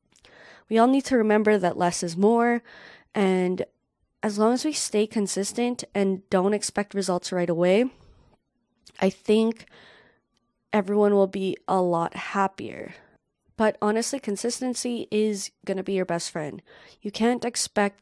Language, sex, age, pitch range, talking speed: English, female, 20-39, 185-225 Hz, 145 wpm